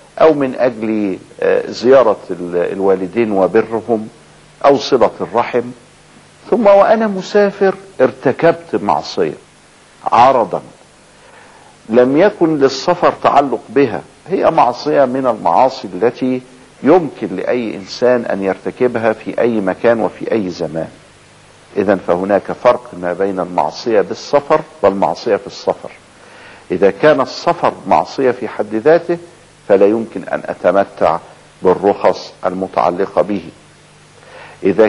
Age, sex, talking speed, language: 50-69, male, 105 wpm, Arabic